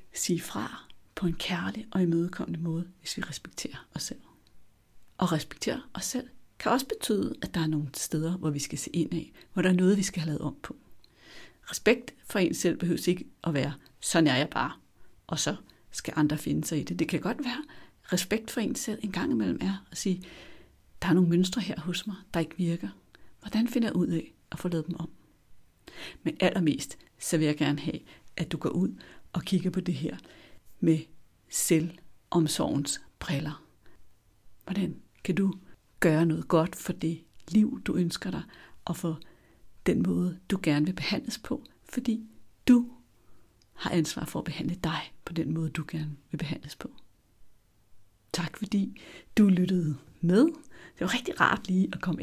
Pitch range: 155-185 Hz